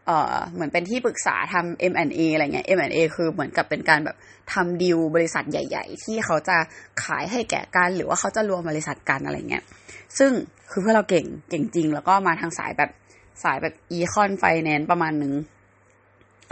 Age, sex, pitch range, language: 20-39, female, 160-210 Hz, Thai